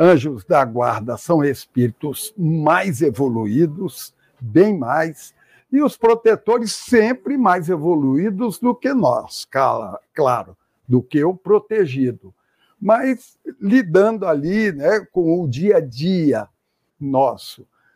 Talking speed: 110 wpm